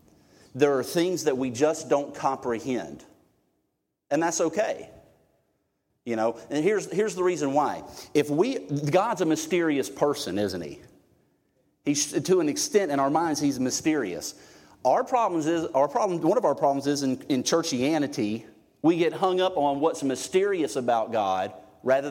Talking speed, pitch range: 160 wpm, 135-180 Hz